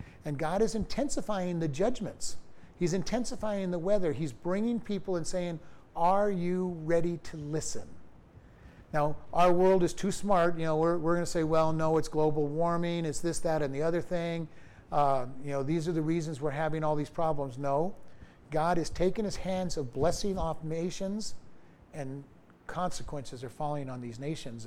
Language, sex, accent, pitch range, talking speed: English, male, American, 150-200 Hz, 180 wpm